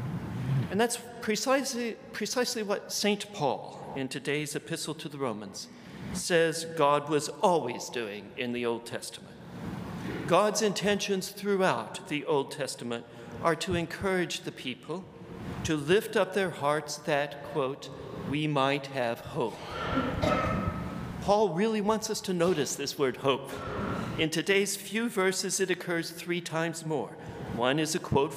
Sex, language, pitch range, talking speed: male, English, 145-180 Hz, 140 wpm